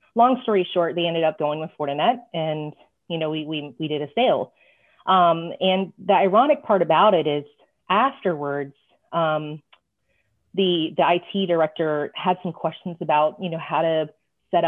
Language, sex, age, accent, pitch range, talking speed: English, female, 30-49, American, 155-180 Hz, 170 wpm